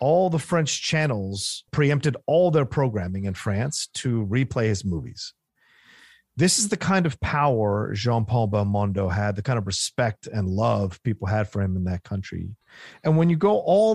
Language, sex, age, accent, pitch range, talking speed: English, male, 40-59, American, 110-155 Hz, 175 wpm